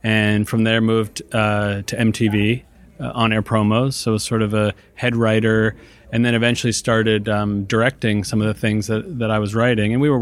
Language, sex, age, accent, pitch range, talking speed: English, male, 30-49, American, 105-120 Hz, 210 wpm